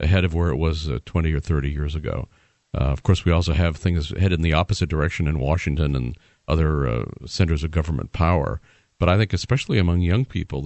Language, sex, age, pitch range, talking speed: English, male, 50-69, 75-95 Hz, 220 wpm